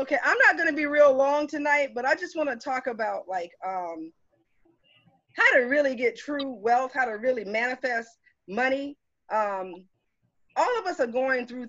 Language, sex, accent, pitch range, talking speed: English, female, American, 215-285 Hz, 175 wpm